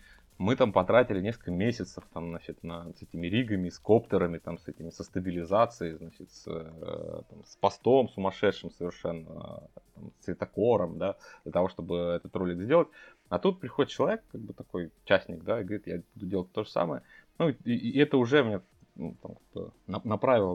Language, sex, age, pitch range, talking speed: Russian, male, 20-39, 85-110 Hz, 170 wpm